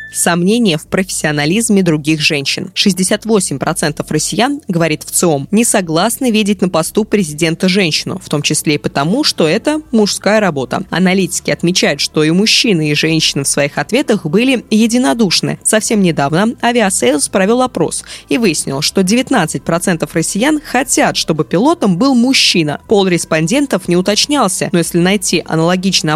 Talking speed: 140 wpm